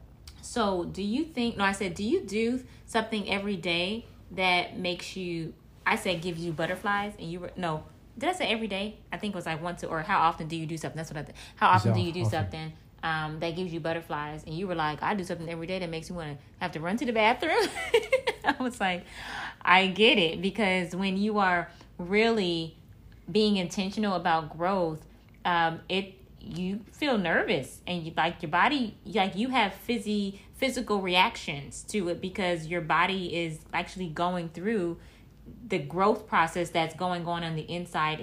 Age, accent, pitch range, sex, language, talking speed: 20-39, American, 165-205 Hz, female, English, 200 wpm